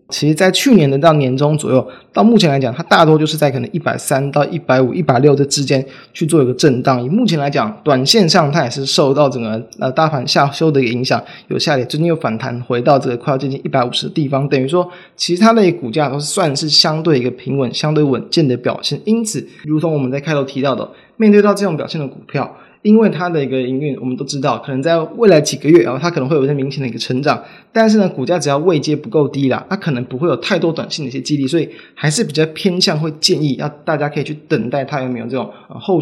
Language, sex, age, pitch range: Chinese, male, 20-39, 135-170 Hz